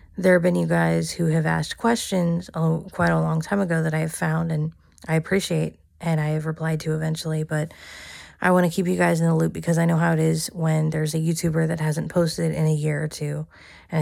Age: 20-39